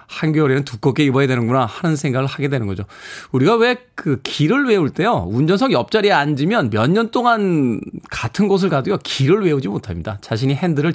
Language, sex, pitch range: Korean, male, 115-155 Hz